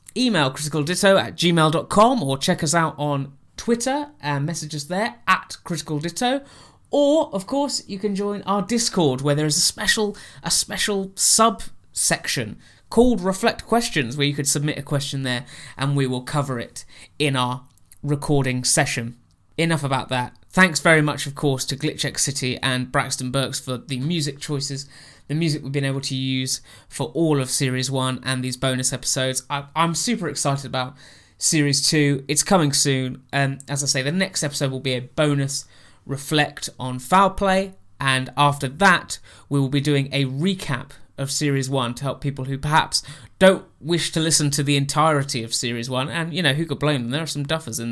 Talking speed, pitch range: 185 wpm, 130-165 Hz